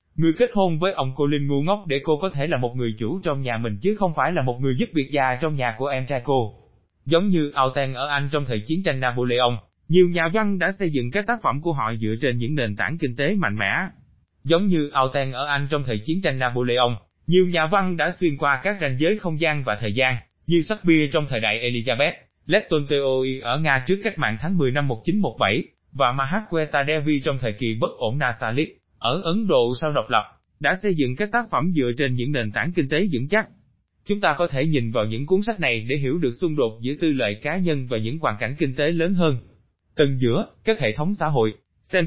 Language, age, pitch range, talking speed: Vietnamese, 20-39, 120-170 Hz, 240 wpm